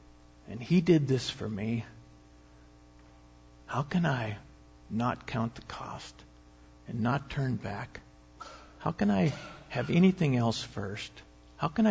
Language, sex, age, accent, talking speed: English, male, 60-79, American, 130 wpm